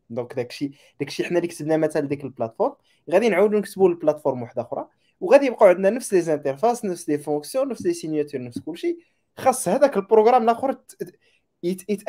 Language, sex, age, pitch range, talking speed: Arabic, male, 20-39, 140-215 Hz, 165 wpm